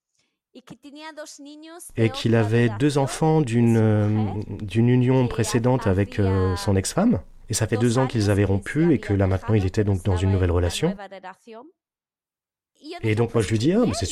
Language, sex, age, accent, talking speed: French, male, 30-49, French, 175 wpm